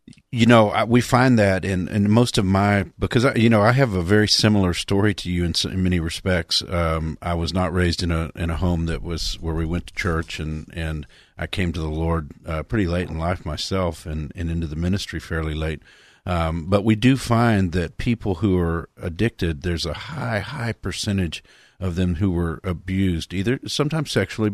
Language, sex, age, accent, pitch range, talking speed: English, male, 50-69, American, 85-105 Hz, 215 wpm